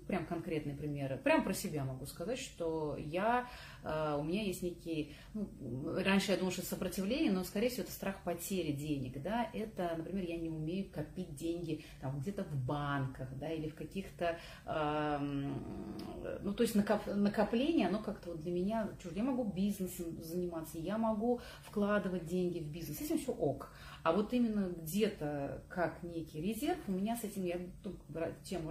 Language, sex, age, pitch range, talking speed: Russian, female, 30-49, 160-205 Hz, 175 wpm